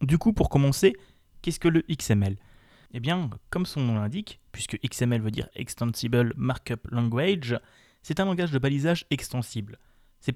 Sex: male